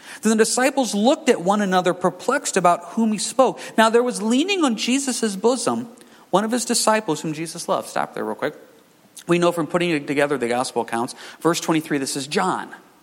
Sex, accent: male, American